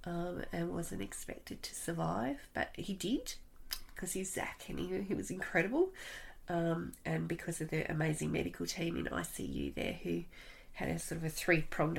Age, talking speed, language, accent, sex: 30-49, 175 wpm, English, Australian, female